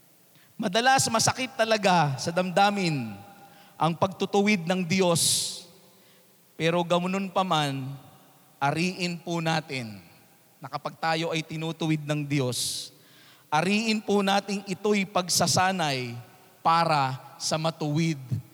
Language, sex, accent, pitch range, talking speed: Filipino, male, native, 160-230 Hz, 90 wpm